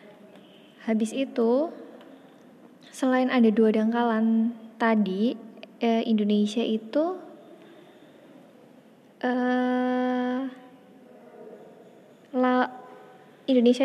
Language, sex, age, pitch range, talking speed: Indonesian, female, 20-39, 220-255 Hz, 55 wpm